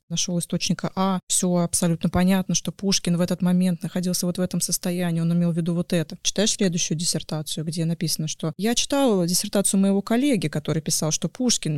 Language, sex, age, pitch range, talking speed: Russian, female, 20-39, 170-210 Hz, 190 wpm